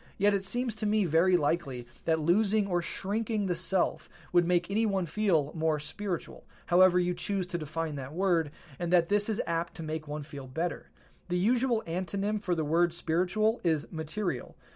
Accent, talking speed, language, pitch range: American, 185 wpm, English, 155-190 Hz